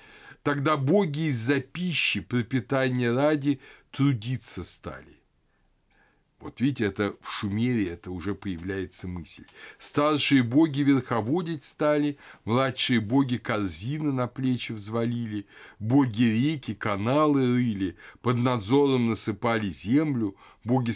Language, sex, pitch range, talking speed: Russian, male, 105-145 Hz, 105 wpm